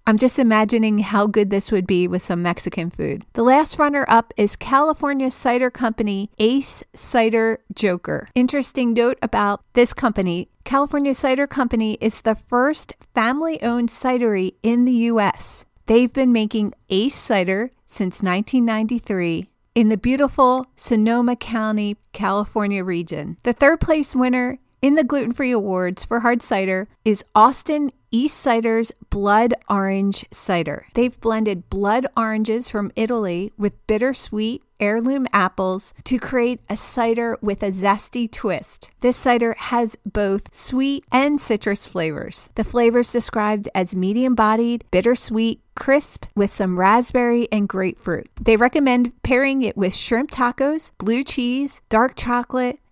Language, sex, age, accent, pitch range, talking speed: English, female, 40-59, American, 205-250 Hz, 140 wpm